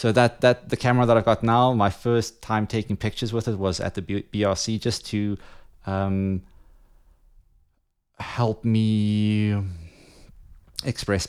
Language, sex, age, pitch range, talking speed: English, male, 30-49, 90-110 Hz, 140 wpm